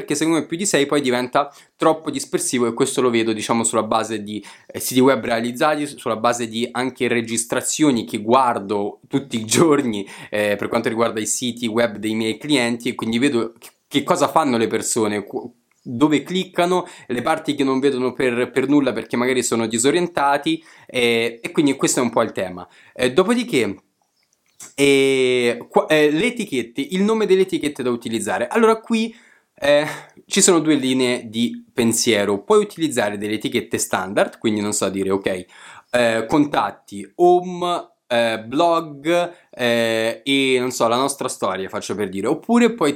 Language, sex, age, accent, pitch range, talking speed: Italian, male, 20-39, native, 115-155 Hz, 165 wpm